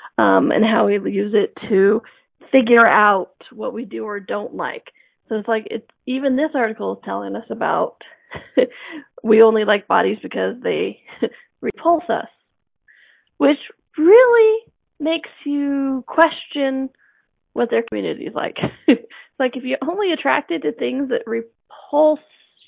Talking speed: 145 wpm